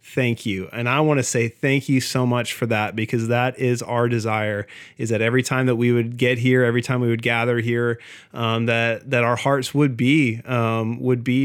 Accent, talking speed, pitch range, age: American, 225 wpm, 115-135 Hz, 30-49